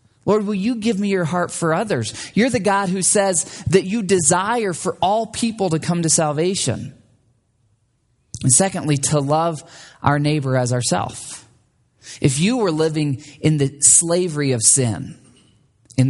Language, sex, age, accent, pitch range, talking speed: English, male, 20-39, American, 125-175 Hz, 155 wpm